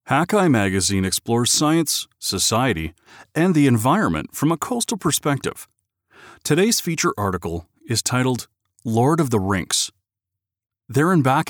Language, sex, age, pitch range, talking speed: English, male, 40-59, 100-150 Hz, 125 wpm